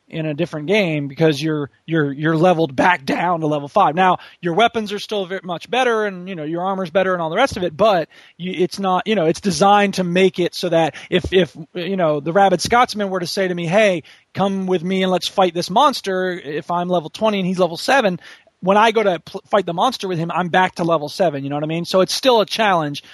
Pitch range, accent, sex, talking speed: 170-215 Hz, American, male, 255 wpm